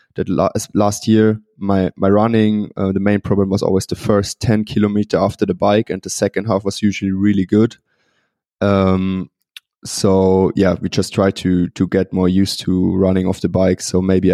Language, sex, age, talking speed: English, male, 20-39, 195 wpm